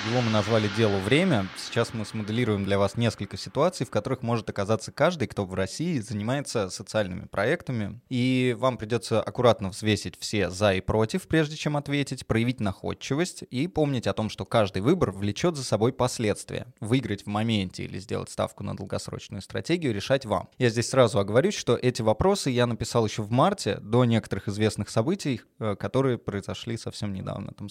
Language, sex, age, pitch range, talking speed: Russian, male, 20-39, 105-135 Hz, 175 wpm